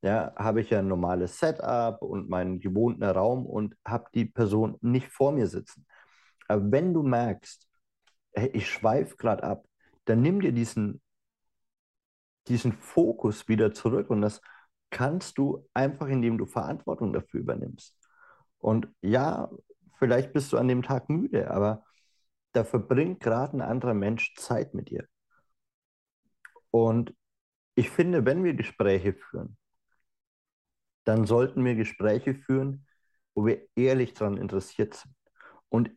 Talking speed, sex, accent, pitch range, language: 135 wpm, male, German, 110-140 Hz, German